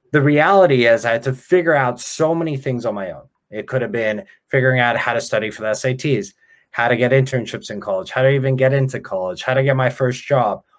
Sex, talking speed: male, 245 wpm